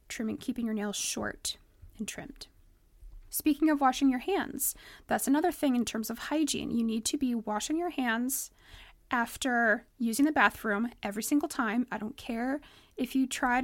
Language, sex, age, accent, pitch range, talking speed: English, female, 20-39, American, 225-270 Hz, 170 wpm